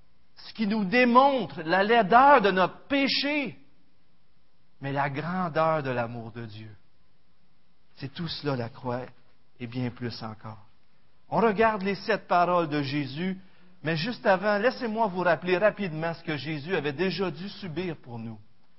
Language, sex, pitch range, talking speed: French, male, 130-200 Hz, 155 wpm